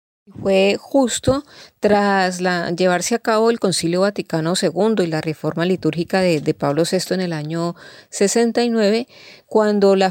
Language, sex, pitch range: Spanish, female, 165-205 Hz